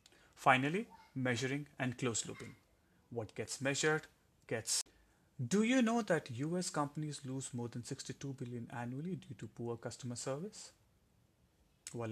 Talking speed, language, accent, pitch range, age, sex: 125 wpm, English, Indian, 115-145 Hz, 30-49, male